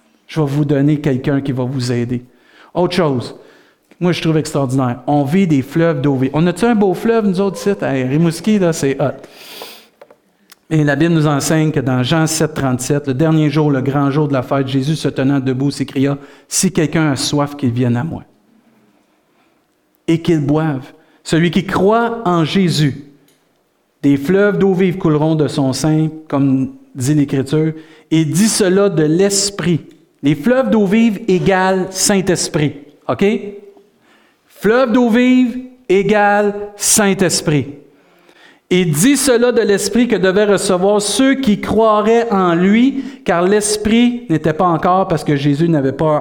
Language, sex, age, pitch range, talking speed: French, male, 50-69, 140-195 Hz, 175 wpm